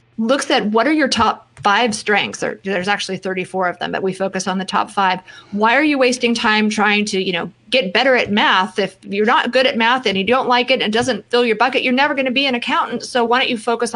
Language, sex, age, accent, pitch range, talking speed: English, female, 30-49, American, 190-240 Hz, 265 wpm